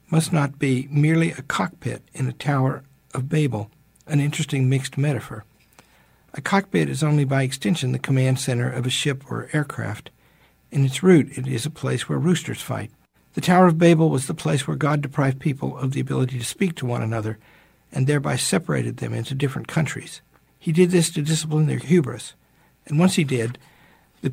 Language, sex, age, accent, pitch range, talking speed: English, male, 60-79, American, 130-160 Hz, 190 wpm